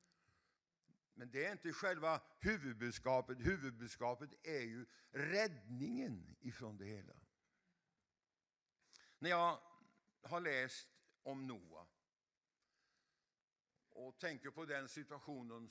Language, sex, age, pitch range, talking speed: English, male, 60-79, 120-170 Hz, 90 wpm